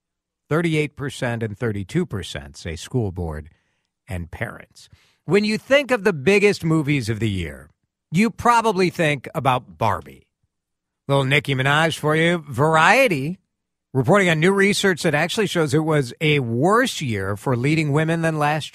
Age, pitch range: 50-69, 105-160 Hz